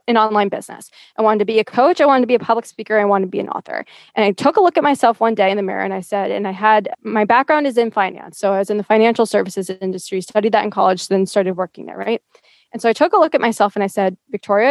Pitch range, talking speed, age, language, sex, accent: 215-295 Hz, 300 wpm, 20-39, English, female, American